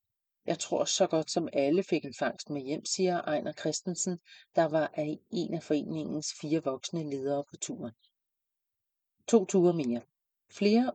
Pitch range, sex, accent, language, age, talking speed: 150-190 Hz, female, Danish, English, 40-59, 160 wpm